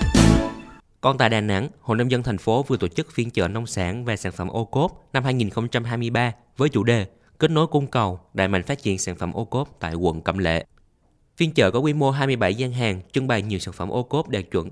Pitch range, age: 100-130 Hz, 20-39